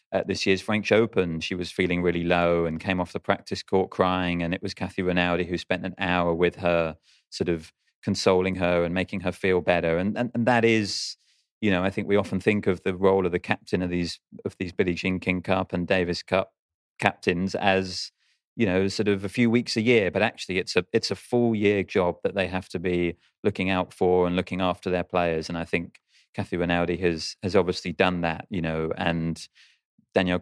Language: English